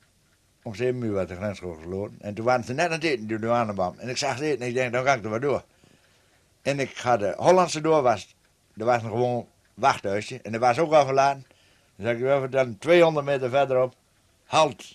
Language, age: Dutch, 60-79